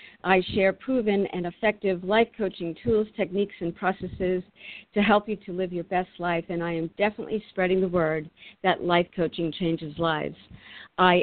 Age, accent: 50-69, American